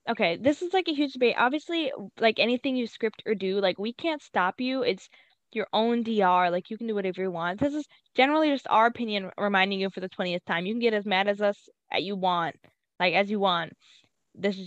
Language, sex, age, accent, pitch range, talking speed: English, female, 10-29, American, 190-260 Hz, 235 wpm